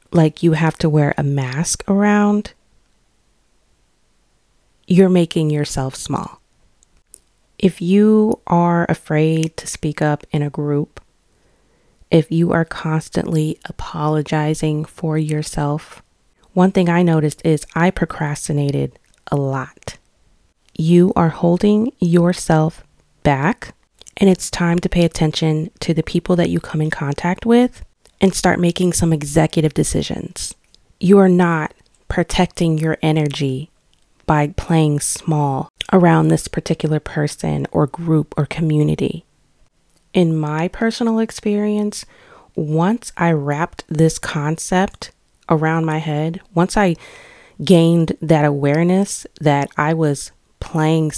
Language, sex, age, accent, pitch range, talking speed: English, female, 30-49, American, 150-180 Hz, 120 wpm